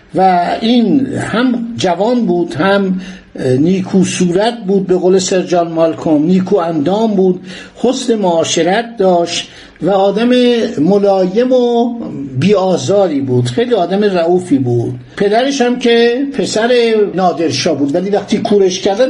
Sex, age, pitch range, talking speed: male, 60-79, 175-230 Hz, 125 wpm